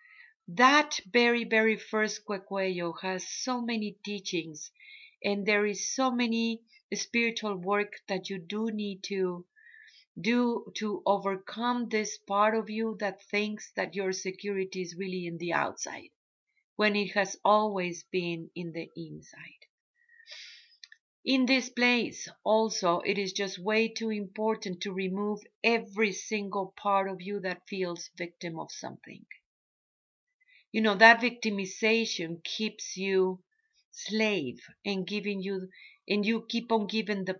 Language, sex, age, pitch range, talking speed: English, female, 40-59, 190-230 Hz, 135 wpm